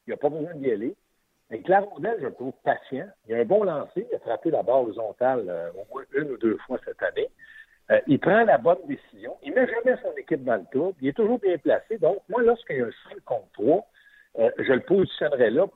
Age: 60-79